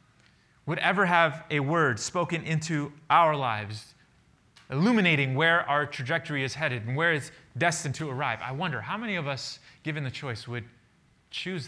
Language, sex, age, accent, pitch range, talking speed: English, male, 30-49, American, 125-165 Hz, 165 wpm